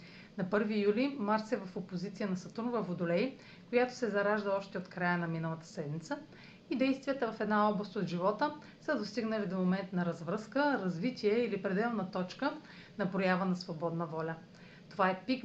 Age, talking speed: 40-59, 175 wpm